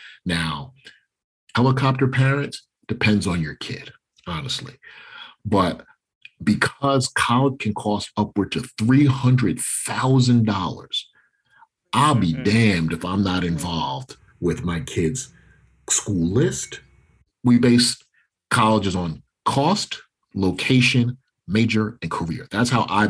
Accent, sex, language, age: American, male, English, 40-59